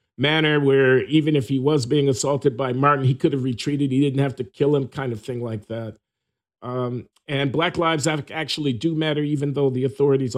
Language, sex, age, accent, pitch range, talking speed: English, male, 50-69, American, 115-140 Hz, 210 wpm